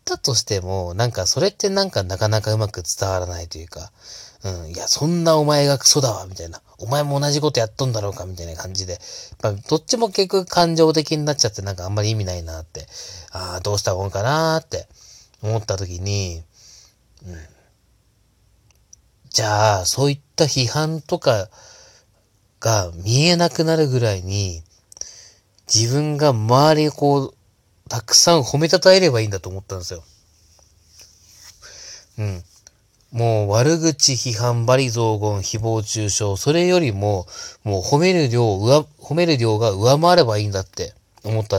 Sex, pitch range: male, 100-135 Hz